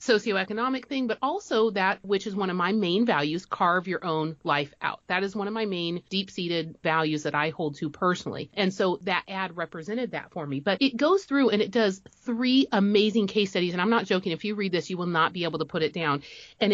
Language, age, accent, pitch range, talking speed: English, 30-49, American, 160-205 Hz, 245 wpm